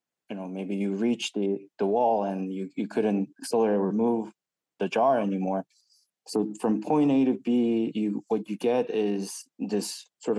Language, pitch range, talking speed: English, 100-120 Hz, 180 wpm